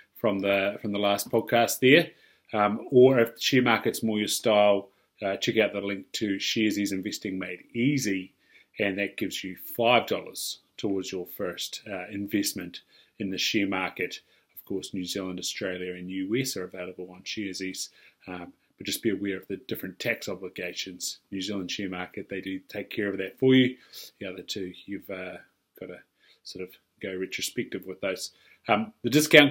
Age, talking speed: 30-49, 185 wpm